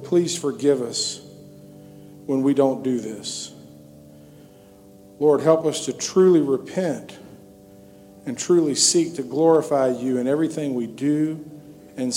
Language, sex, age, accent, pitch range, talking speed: English, male, 50-69, American, 100-145 Hz, 125 wpm